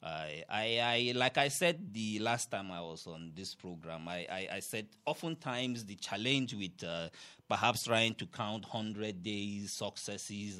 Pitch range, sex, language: 90-115 Hz, male, English